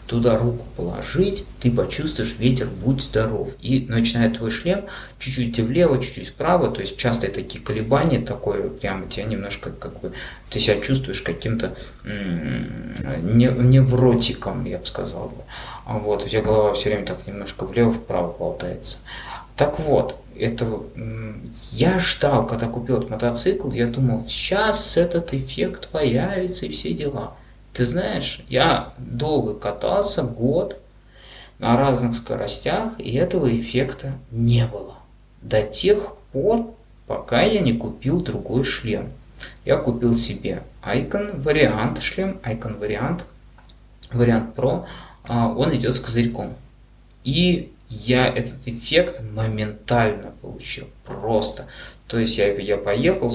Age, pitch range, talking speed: 20-39, 110-130 Hz, 130 wpm